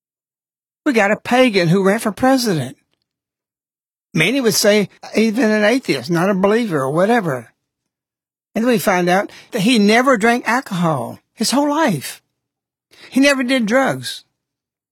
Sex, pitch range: male, 165-240 Hz